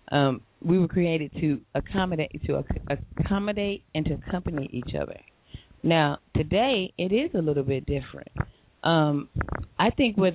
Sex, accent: female, American